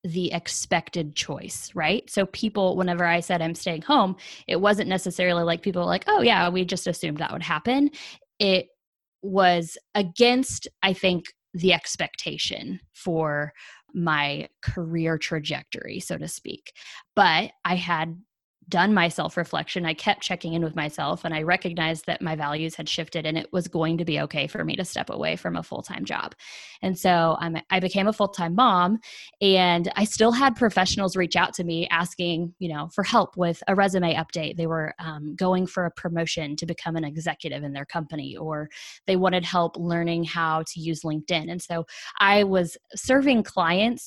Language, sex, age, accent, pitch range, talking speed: English, female, 10-29, American, 165-190 Hz, 180 wpm